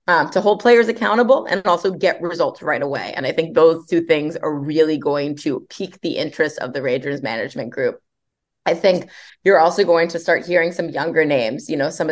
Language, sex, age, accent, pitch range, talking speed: English, female, 20-39, American, 150-180 Hz, 215 wpm